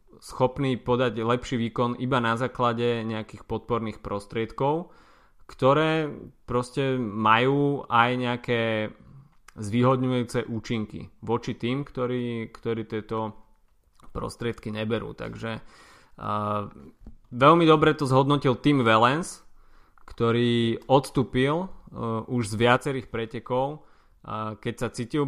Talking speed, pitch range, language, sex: 100 wpm, 105-125 Hz, Slovak, male